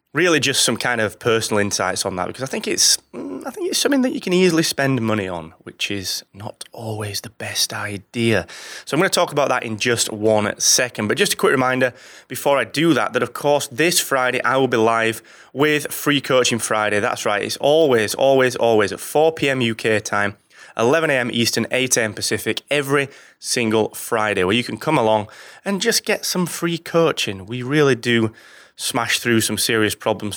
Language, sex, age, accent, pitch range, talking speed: English, male, 20-39, British, 110-145 Hz, 205 wpm